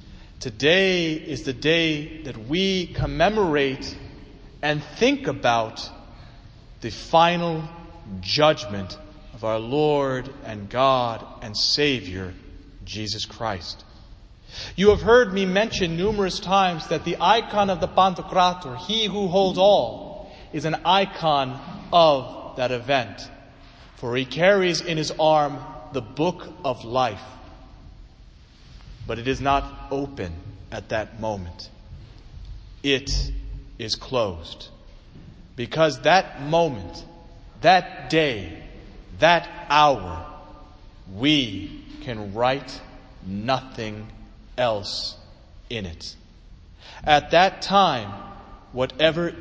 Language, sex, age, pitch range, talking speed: German, male, 30-49, 110-170 Hz, 100 wpm